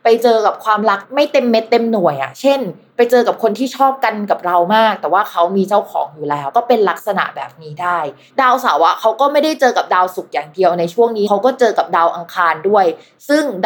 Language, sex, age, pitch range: Thai, female, 20-39, 190-245 Hz